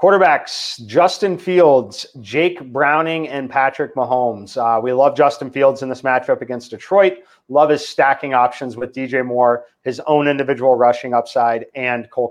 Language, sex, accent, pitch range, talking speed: English, male, American, 125-155 Hz, 155 wpm